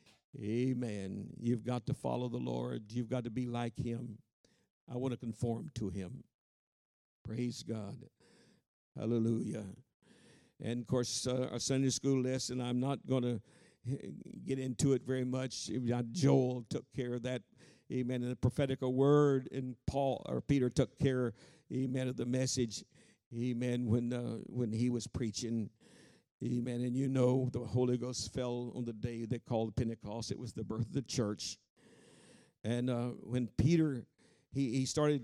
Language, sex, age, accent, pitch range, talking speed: English, male, 60-79, American, 115-130 Hz, 160 wpm